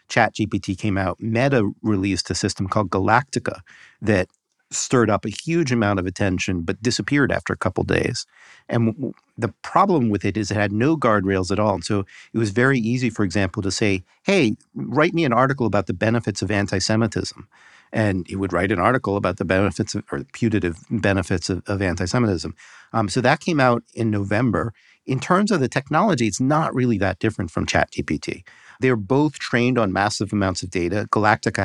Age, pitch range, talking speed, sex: 50-69, 95-120 Hz, 195 wpm, male